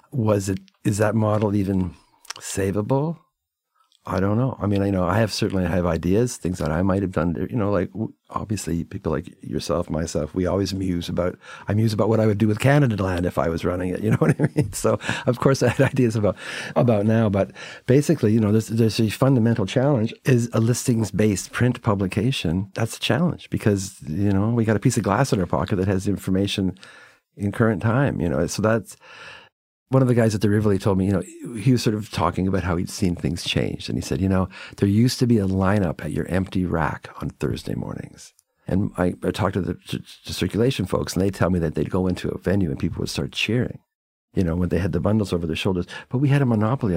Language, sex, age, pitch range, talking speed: English, male, 50-69, 90-115 Hz, 235 wpm